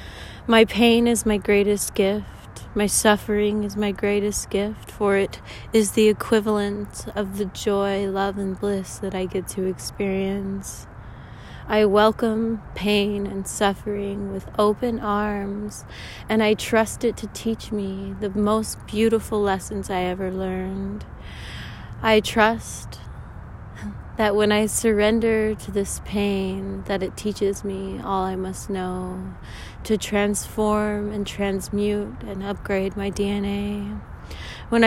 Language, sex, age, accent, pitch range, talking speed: English, female, 20-39, American, 195-215 Hz, 130 wpm